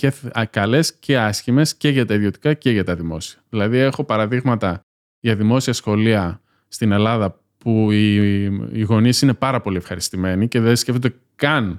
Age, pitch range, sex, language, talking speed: 20-39, 105-140 Hz, male, Greek, 160 wpm